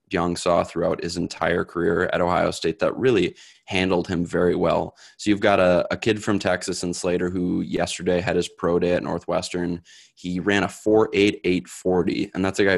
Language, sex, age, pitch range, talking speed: English, male, 20-39, 90-95 Hz, 195 wpm